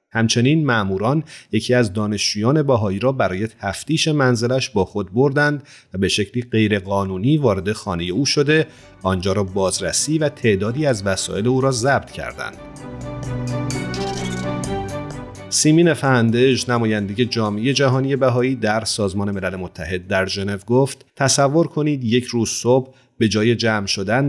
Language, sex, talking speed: Persian, male, 135 wpm